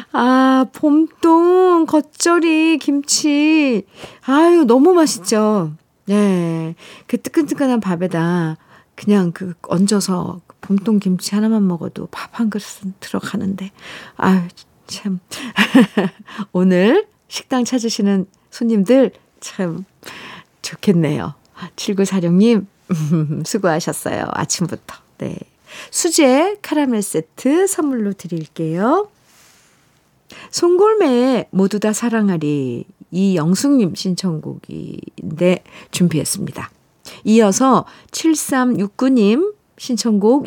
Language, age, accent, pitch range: Korean, 50-69, native, 180-265 Hz